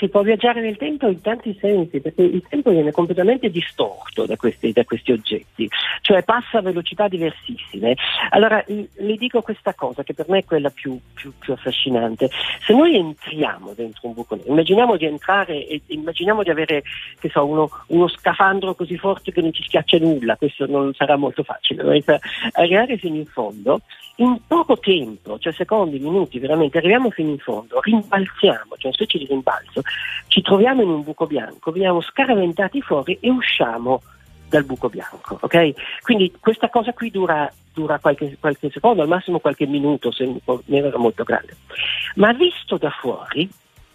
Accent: native